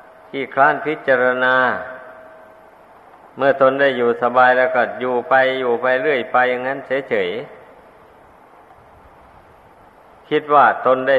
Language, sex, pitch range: Thai, male, 120-130 Hz